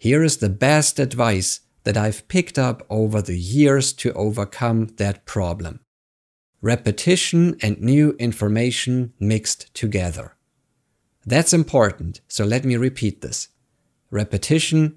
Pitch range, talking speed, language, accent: 105-145 Hz, 120 wpm, English, German